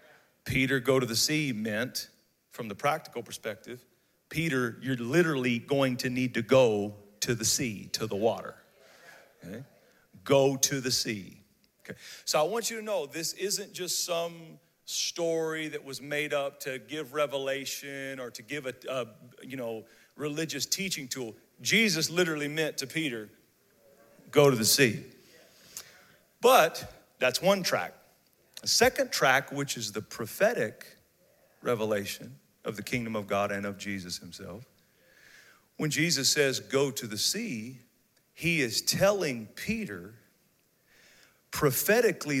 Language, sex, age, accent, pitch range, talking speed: English, male, 40-59, American, 115-155 Hz, 140 wpm